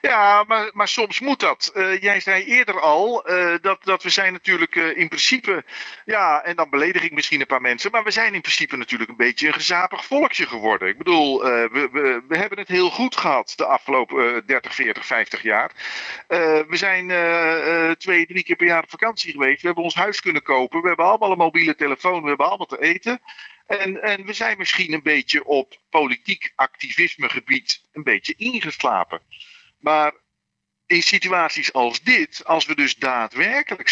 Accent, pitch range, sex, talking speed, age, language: Dutch, 150-205 Hz, male, 195 wpm, 50-69, Dutch